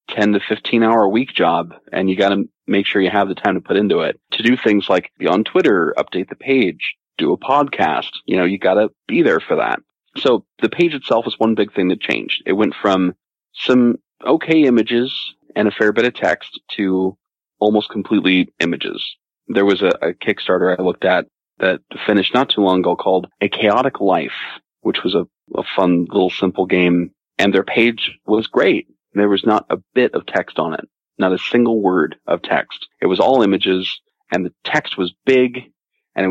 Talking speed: 205 wpm